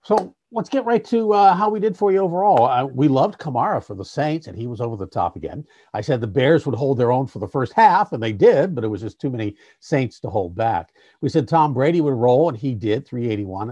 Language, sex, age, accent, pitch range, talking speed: English, male, 50-69, American, 110-155 Hz, 265 wpm